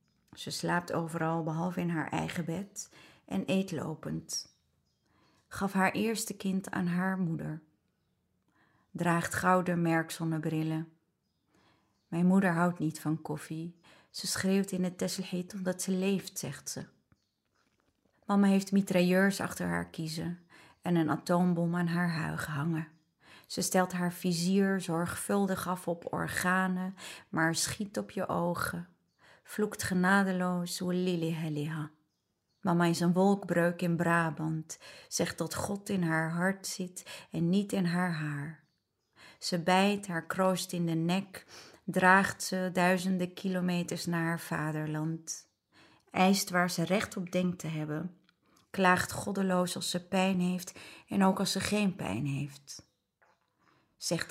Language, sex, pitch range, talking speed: Dutch, female, 165-185 Hz, 135 wpm